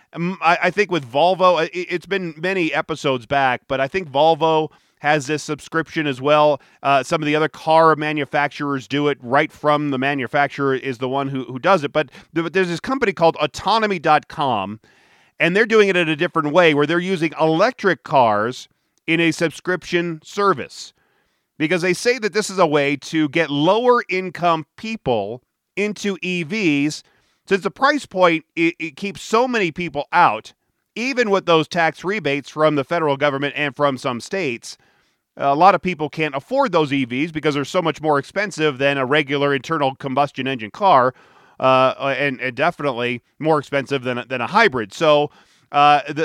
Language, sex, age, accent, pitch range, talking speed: English, male, 40-59, American, 140-175 Hz, 170 wpm